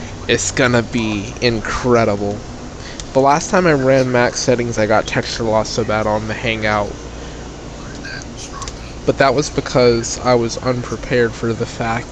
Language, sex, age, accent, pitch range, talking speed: English, male, 20-39, American, 115-150 Hz, 155 wpm